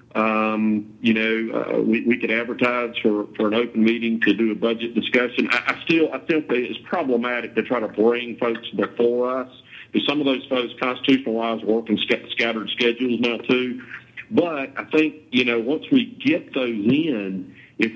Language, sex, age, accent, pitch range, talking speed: English, male, 50-69, American, 105-125 Hz, 190 wpm